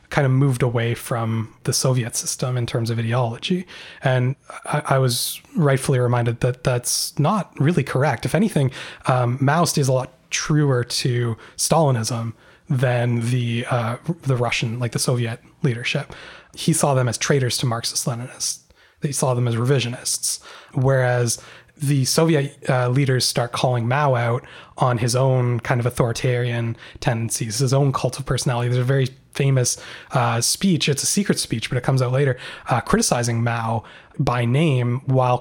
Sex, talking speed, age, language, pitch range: male, 165 wpm, 20-39, English, 120-145 Hz